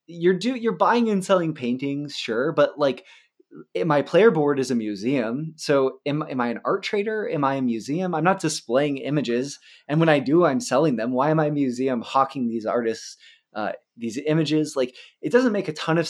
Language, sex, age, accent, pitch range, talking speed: English, male, 20-39, American, 125-170 Hz, 210 wpm